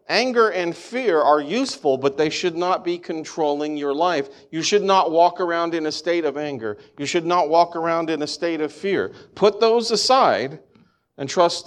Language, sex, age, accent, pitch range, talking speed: English, male, 40-59, American, 120-180 Hz, 195 wpm